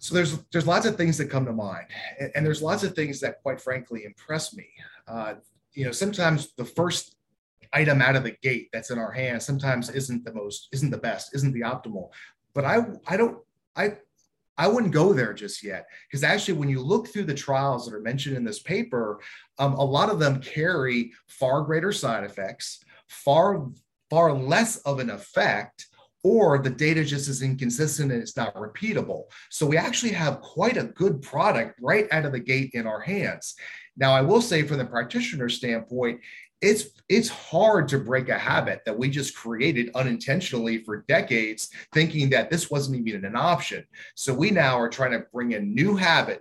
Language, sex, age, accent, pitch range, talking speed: English, male, 30-49, American, 120-165 Hz, 195 wpm